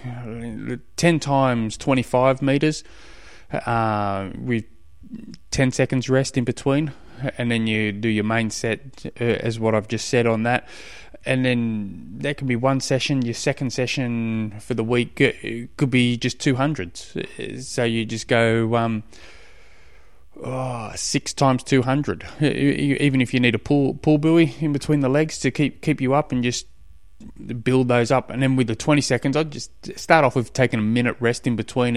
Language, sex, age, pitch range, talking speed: English, male, 20-39, 110-135 Hz, 170 wpm